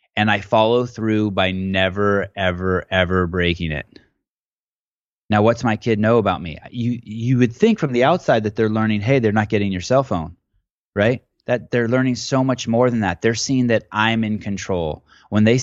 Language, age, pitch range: English, 20-39, 95-120 Hz